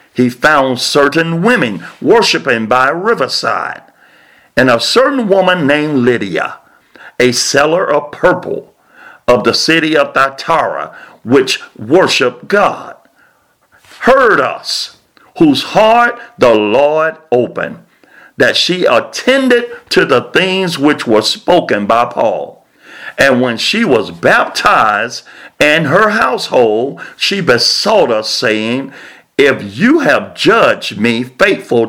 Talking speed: 115 wpm